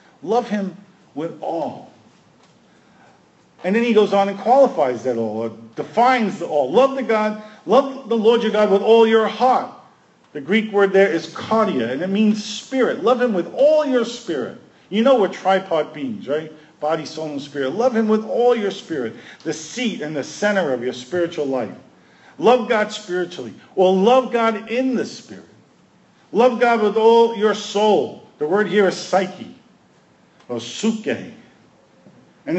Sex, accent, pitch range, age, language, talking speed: male, American, 175-235 Hz, 50-69, English, 170 wpm